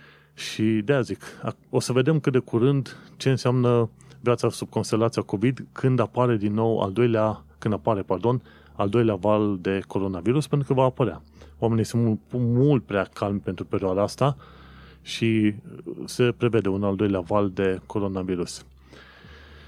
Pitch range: 90-120 Hz